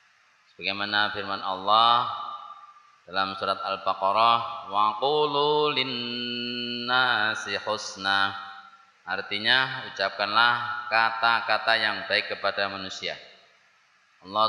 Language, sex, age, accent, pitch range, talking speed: Indonesian, male, 20-39, native, 100-125 Hz, 70 wpm